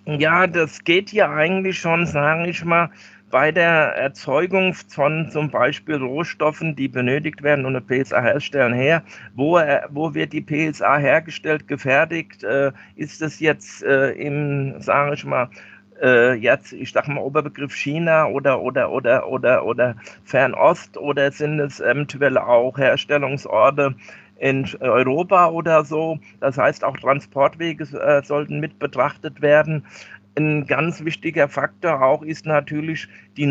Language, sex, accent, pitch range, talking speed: German, male, German, 140-160 Hz, 140 wpm